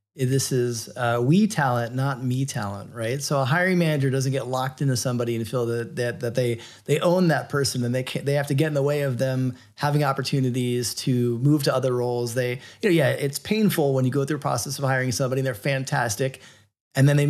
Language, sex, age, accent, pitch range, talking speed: English, male, 30-49, American, 120-150 Hz, 235 wpm